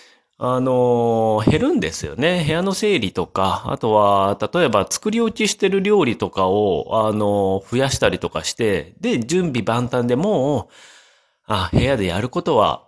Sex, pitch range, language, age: male, 100-165 Hz, Japanese, 30-49